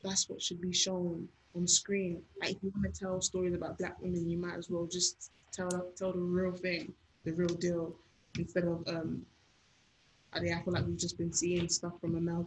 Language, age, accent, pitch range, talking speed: English, 20-39, British, 165-180 Hz, 215 wpm